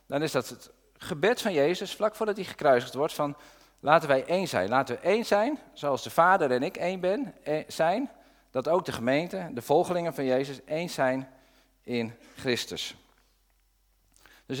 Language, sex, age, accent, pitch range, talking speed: Dutch, male, 50-69, Dutch, 125-185 Hz, 175 wpm